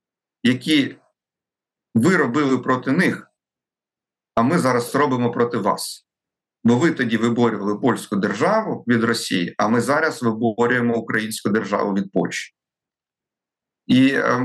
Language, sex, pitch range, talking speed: Ukrainian, male, 115-140 Hz, 115 wpm